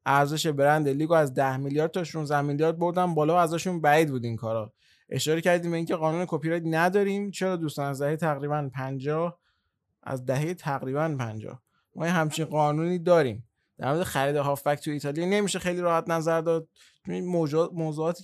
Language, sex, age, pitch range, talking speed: Persian, male, 20-39, 140-170 Hz, 165 wpm